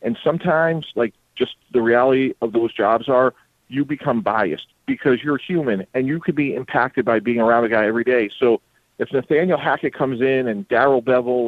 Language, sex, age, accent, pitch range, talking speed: English, male, 40-59, American, 115-140 Hz, 195 wpm